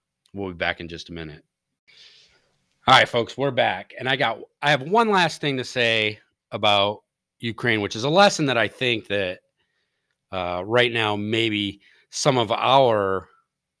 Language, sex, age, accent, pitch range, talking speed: English, male, 30-49, American, 95-130 Hz, 165 wpm